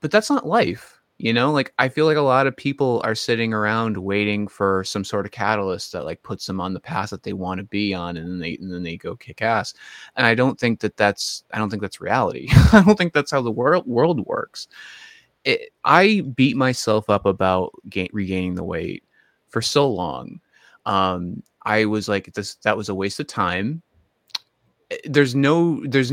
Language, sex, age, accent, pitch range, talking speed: English, male, 30-49, American, 100-140 Hz, 210 wpm